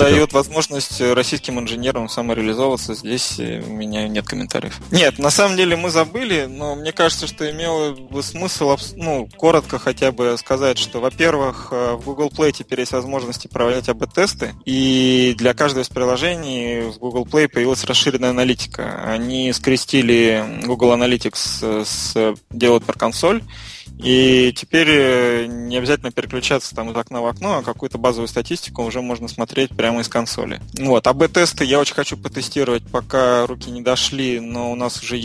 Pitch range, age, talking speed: 120-140 Hz, 20-39, 160 wpm